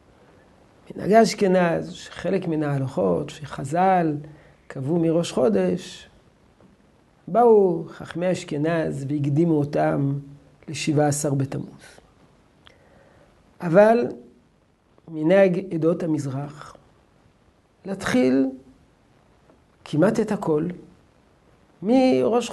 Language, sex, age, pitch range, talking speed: Hebrew, male, 50-69, 150-210 Hz, 65 wpm